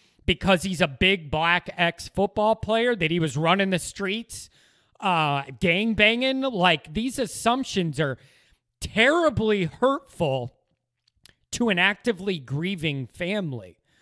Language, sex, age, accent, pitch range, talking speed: English, male, 30-49, American, 165-225 Hz, 110 wpm